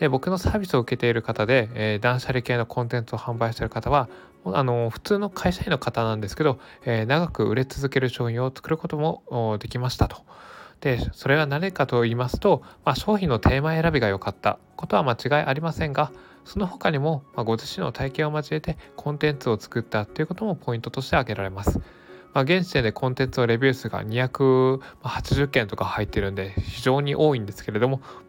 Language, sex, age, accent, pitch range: Japanese, male, 20-39, native, 110-140 Hz